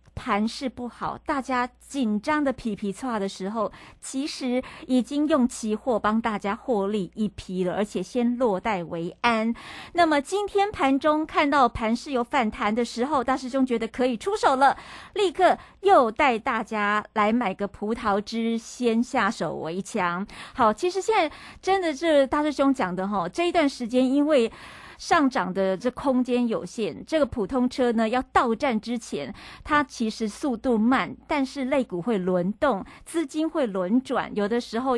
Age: 50-69